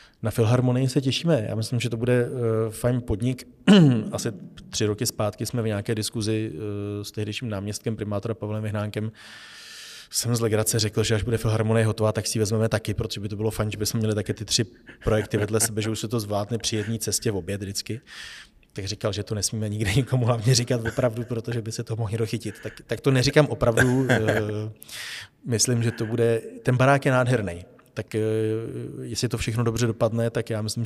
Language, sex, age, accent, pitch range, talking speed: Czech, male, 30-49, native, 110-120 Hz, 195 wpm